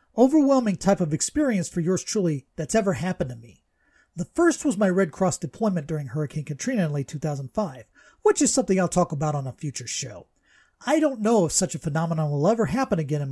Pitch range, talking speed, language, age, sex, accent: 150-220 Hz, 210 wpm, English, 40-59, male, American